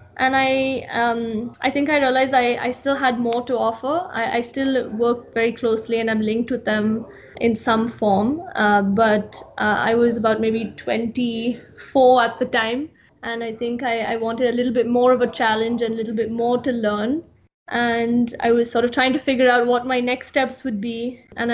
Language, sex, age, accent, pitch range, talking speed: English, female, 20-39, Indian, 225-250 Hz, 210 wpm